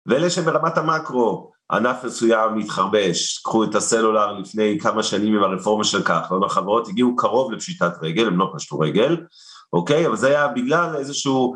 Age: 40-59